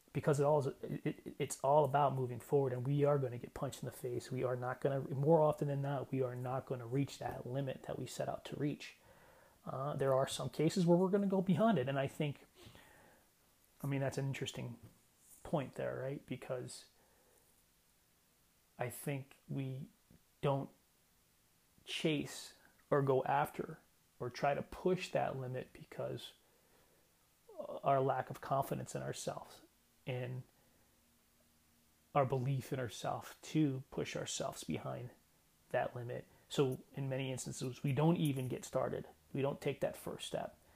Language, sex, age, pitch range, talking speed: English, male, 30-49, 125-140 Hz, 170 wpm